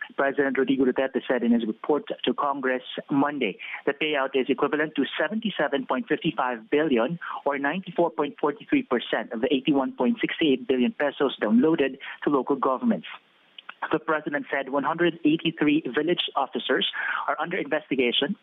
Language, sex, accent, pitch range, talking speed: English, male, Filipino, 135-160 Hz, 120 wpm